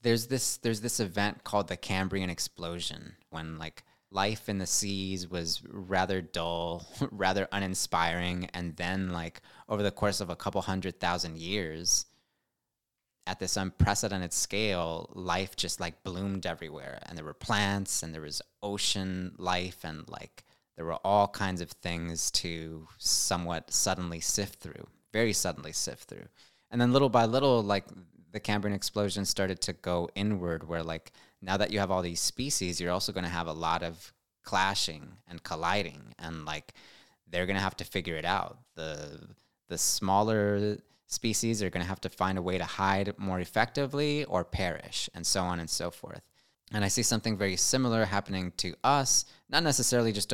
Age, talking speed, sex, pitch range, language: 20-39, 175 wpm, male, 90-105 Hz, English